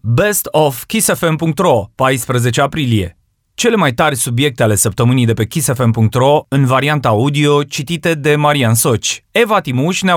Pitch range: 120-165 Hz